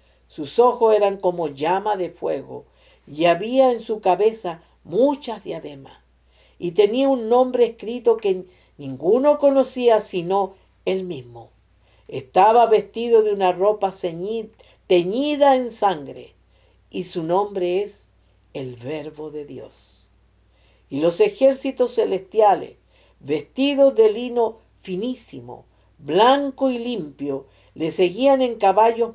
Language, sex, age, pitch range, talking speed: English, female, 50-69, 145-235 Hz, 115 wpm